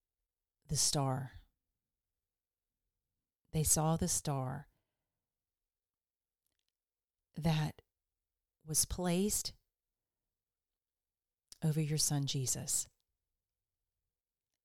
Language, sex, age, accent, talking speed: English, female, 40-59, American, 55 wpm